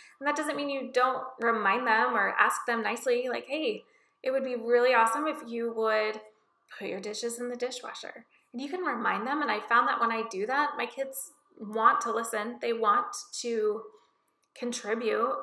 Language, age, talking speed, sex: English, 20-39, 195 wpm, female